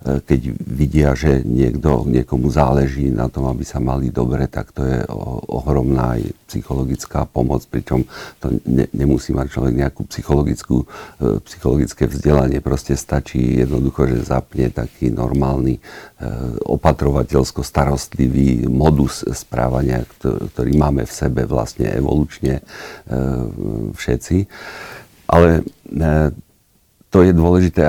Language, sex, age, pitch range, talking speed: Slovak, male, 50-69, 65-80 Hz, 110 wpm